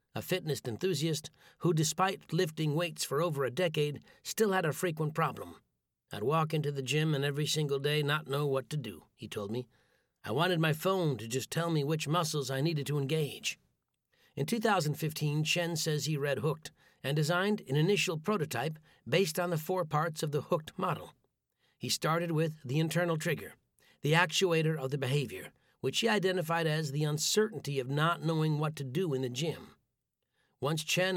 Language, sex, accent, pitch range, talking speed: English, male, American, 145-175 Hz, 185 wpm